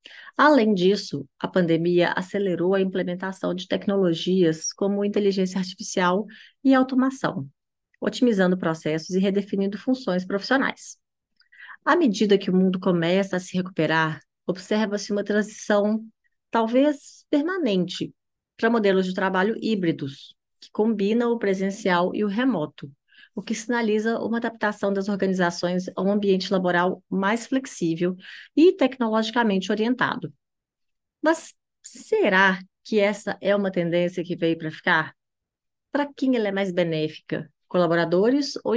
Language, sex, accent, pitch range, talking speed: Portuguese, female, Brazilian, 180-225 Hz, 125 wpm